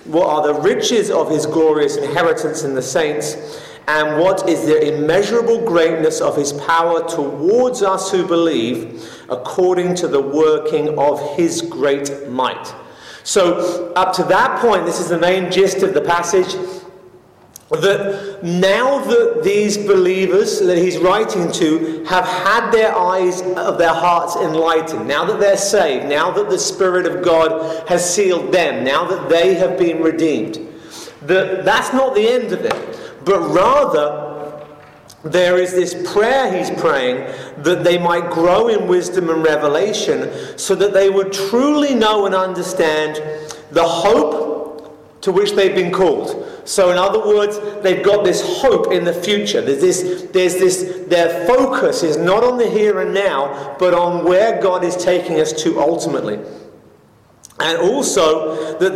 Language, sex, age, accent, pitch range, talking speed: English, male, 30-49, British, 160-195 Hz, 160 wpm